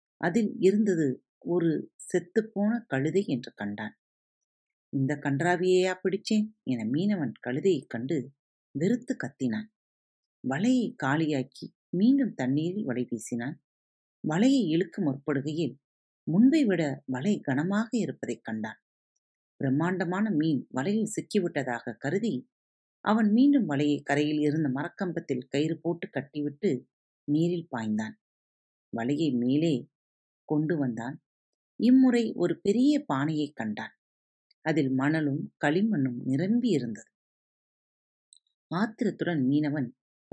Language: Tamil